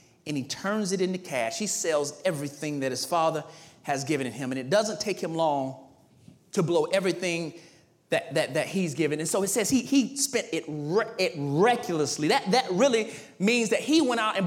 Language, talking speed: English, 200 wpm